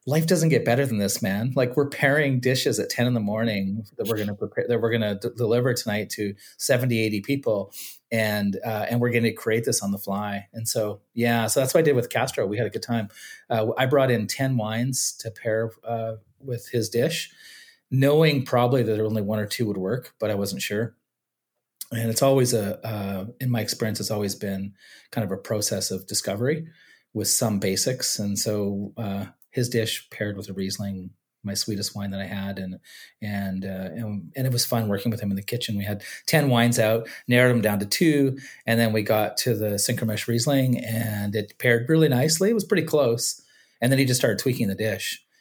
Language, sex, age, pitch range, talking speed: English, male, 30-49, 105-125 Hz, 220 wpm